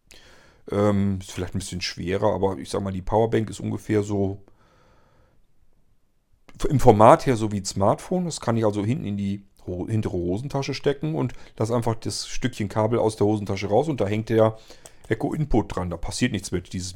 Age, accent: 40-59, German